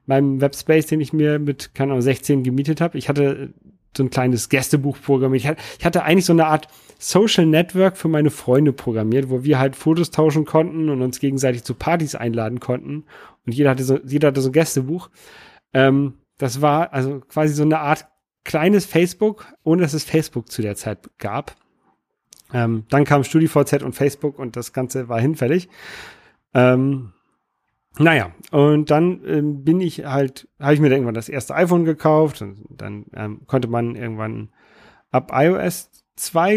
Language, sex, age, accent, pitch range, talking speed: German, male, 40-59, German, 125-155 Hz, 175 wpm